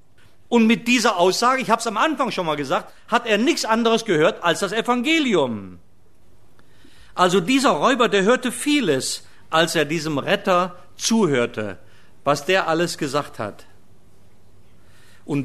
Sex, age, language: male, 50-69, German